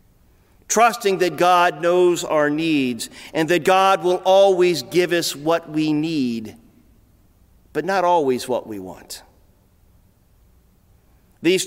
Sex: male